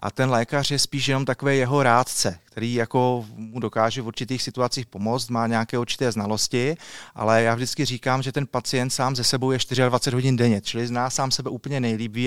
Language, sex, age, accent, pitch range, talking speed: Czech, male, 30-49, native, 120-140 Hz, 200 wpm